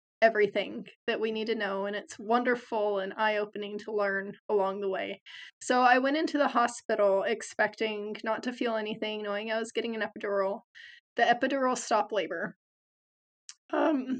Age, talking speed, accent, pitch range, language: 20-39, 160 wpm, American, 220-255 Hz, English